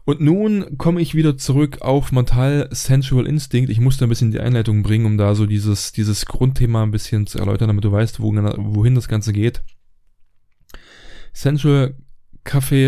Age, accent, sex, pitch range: 10-29, German, male, 115-140 Hz